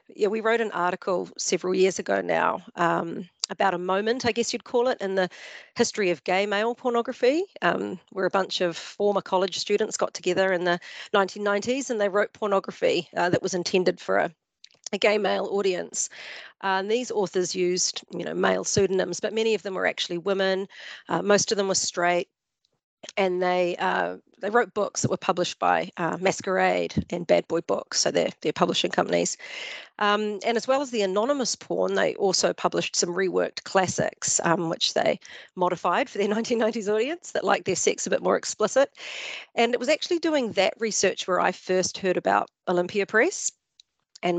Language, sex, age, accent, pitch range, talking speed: English, female, 40-59, Australian, 185-225 Hz, 190 wpm